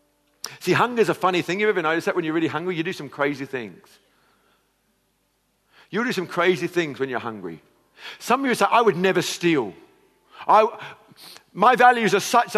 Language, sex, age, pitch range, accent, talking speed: English, male, 50-69, 140-200 Hz, British, 190 wpm